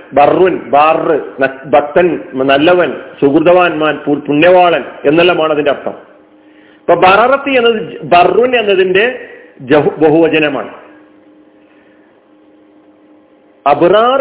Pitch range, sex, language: 140-205 Hz, male, Malayalam